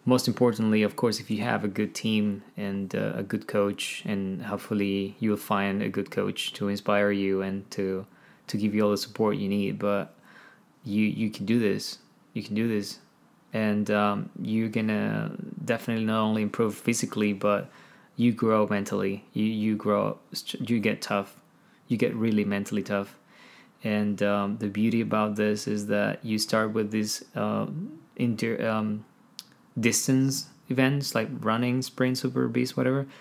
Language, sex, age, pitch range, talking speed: English, male, 20-39, 105-120 Hz, 165 wpm